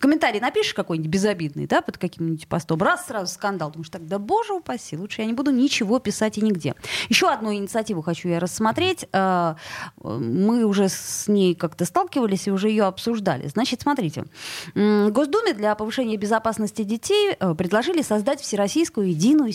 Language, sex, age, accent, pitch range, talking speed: Russian, female, 20-39, native, 170-235 Hz, 160 wpm